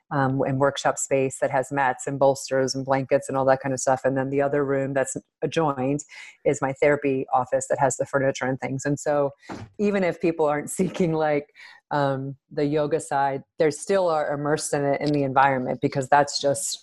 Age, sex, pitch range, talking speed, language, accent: 30-49, female, 135-145 Hz, 210 wpm, English, American